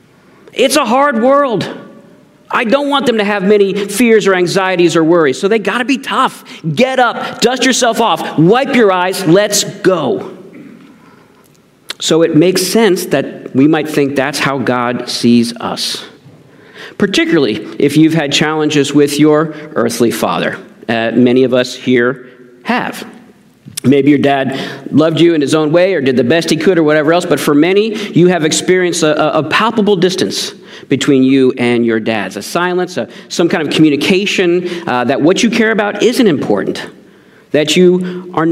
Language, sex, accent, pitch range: English, male, American, 145-205 Hz